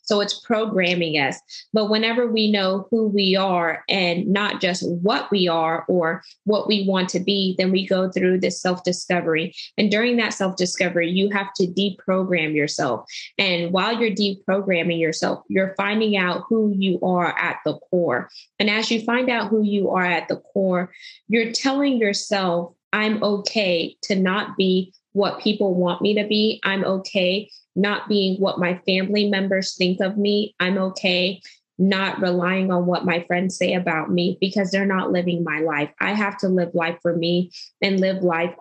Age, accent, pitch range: 20-39, American, 180-205 Hz